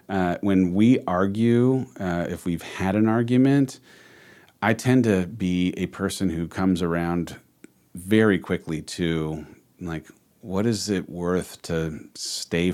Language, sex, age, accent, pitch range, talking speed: English, male, 40-59, American, 85-105 Hz, 135 wpm